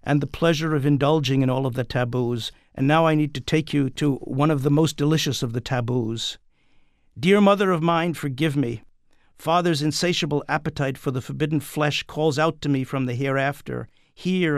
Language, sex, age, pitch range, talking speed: English, male, 50-69, 140-165 Hz, 195 wpm